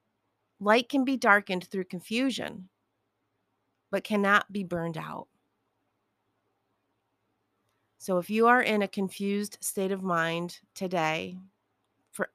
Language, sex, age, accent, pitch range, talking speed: English, female, 30-49, American, 170-220 Hz, 110 wpm